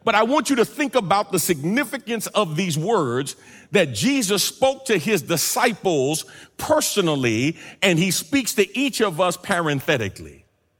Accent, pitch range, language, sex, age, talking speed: American, 145-210 Hz, English, male, 50-69, 150 wpm